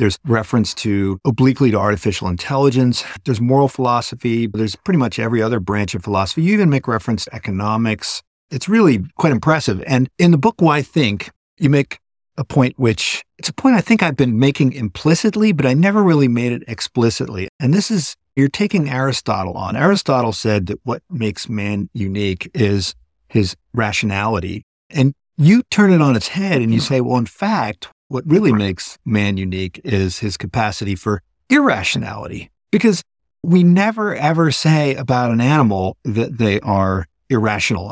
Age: 50-69